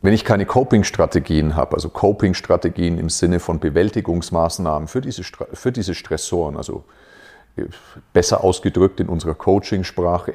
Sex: male